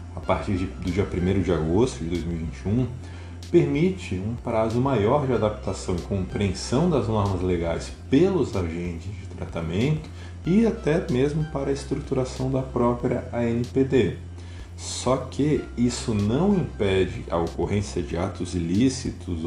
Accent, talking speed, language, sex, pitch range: Brazilian, 135 wpm, Portuguese, male, 90-120 Hz